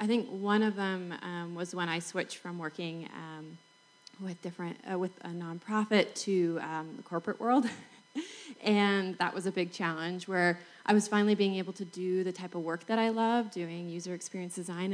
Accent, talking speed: American, 195 wpm